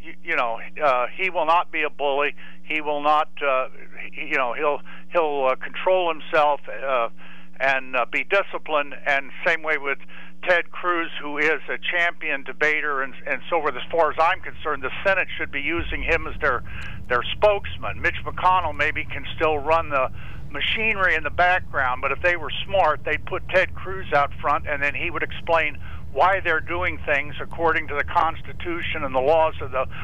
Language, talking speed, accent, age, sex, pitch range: English, 190 wpm, American, 60-79, male, 140-180 Hz